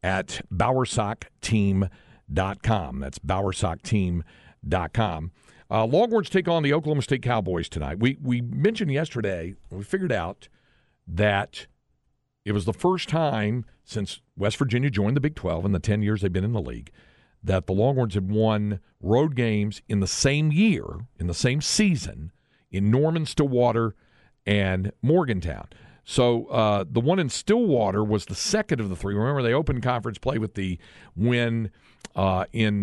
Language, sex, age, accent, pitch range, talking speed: English, male, 50-69, American, 90-125 Hz, 155 wpm